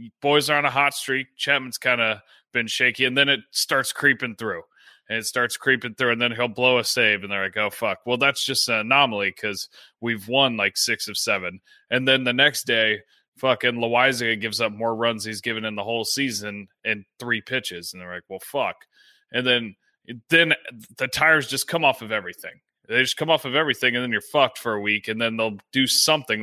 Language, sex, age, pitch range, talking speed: English, male, 20-39, 115-150 Hz, 220 wpm